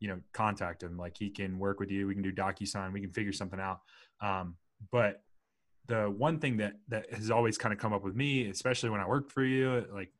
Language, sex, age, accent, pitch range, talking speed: English, male, 20-39, American, 100-125 Hz, 240 wpm